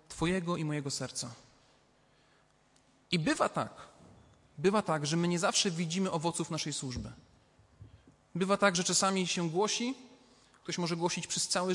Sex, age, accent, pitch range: male, 30-49, native, 165-220 Hz